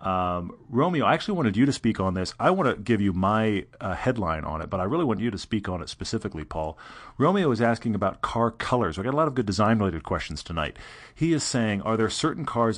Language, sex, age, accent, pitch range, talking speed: English, male, 40-59, American, 95-115 Hz, 250 wpm